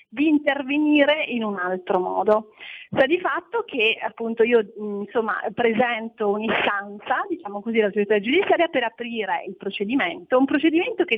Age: 40-59